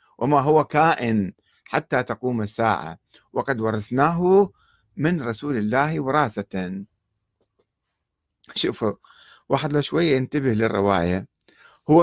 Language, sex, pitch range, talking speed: Arabic, male, 110-160 Hz, 90 wpm